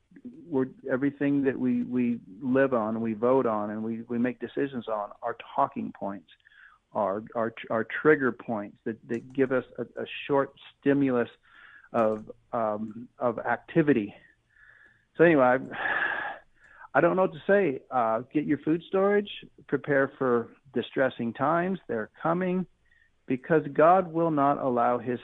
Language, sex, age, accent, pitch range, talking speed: English, male, 50-69, American, 115-145 Hz, 145 wpm